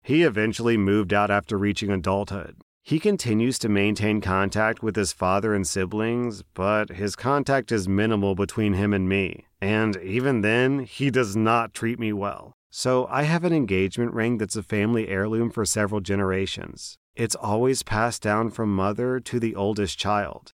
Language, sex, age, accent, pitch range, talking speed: English, male, 30-49, American, 105-140 Hz, 170 wpm